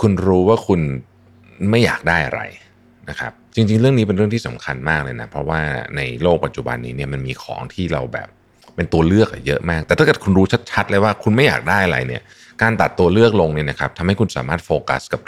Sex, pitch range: male, 75-115 Hz